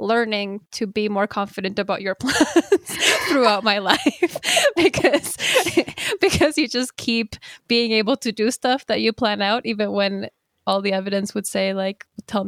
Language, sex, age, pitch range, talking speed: English, female, 10-29, 195-225 Hz, 165 wpm